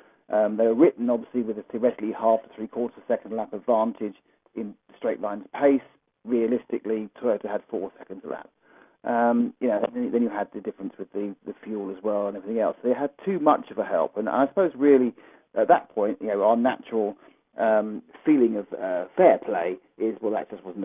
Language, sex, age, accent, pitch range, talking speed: English, male, 40-59, British, 105-140 Hz, 215 wpm